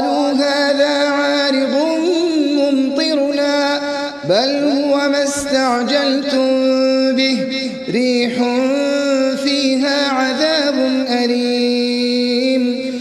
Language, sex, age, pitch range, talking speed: Arabic, male, 30-49, 245-285 Hz, 55 wpm